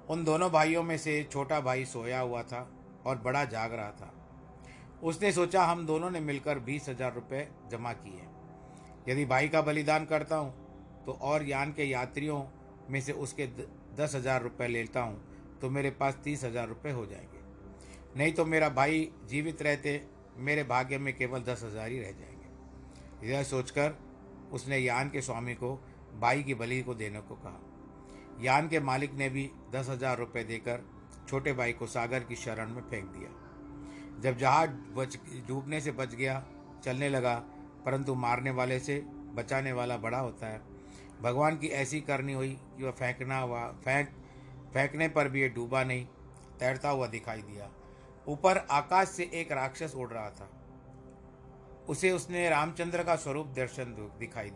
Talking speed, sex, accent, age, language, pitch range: 165 wpm, male, native, 50-69, Hindi, 120-145 Hz